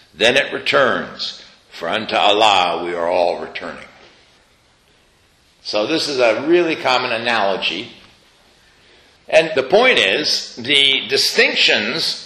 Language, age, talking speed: English, 60-79, 115 wpm